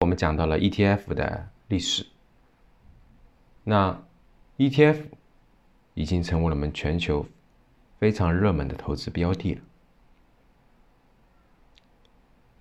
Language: Chinese